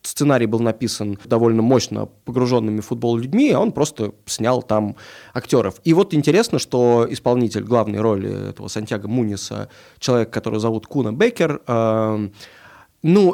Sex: male